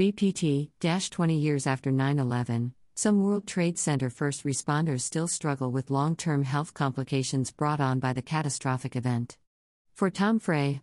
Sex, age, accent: female, 50-69, American